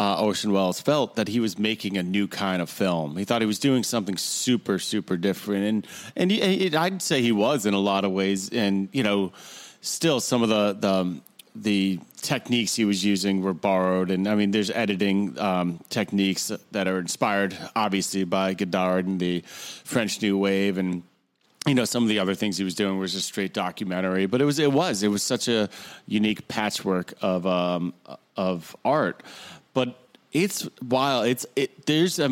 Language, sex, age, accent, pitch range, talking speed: English, male, 30-49, American, 95-120 Hz, 195 wpm